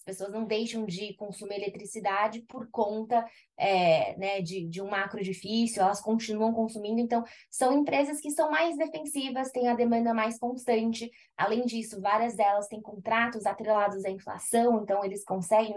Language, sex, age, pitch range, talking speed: Portuguese, female, 20-39, 195-240 Hz, 160 wpm